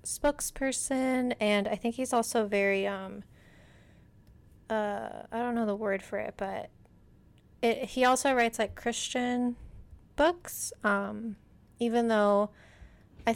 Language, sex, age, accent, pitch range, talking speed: English, female, 20-39, American, 200-235 Hz, 120 wpm